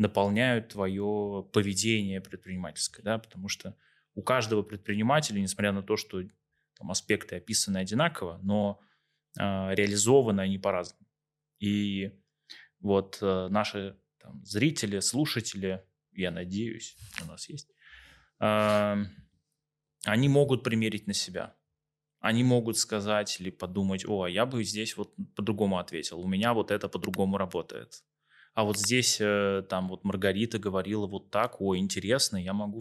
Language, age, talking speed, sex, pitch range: Russian, 20-39, 135 wpm, male, 95-115 Hz